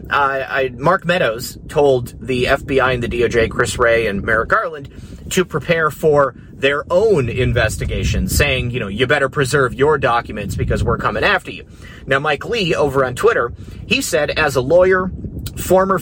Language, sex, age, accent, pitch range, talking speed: English, male, 30-49, American, 130-180 Hz, 170 wpm